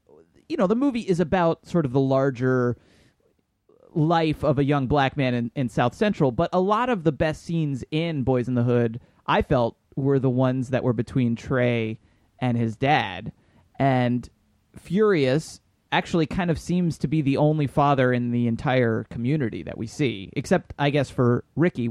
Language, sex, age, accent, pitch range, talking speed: English, male, 30-49, American, 120-150 Hz, 185 wpm